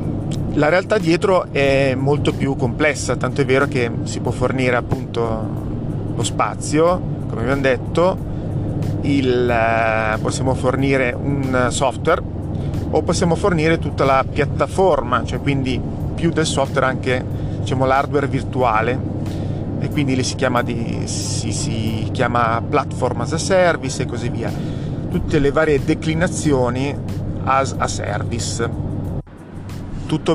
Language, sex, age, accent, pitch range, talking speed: Italian, male, 30-49, native, 115-140 Hz, 125 wpm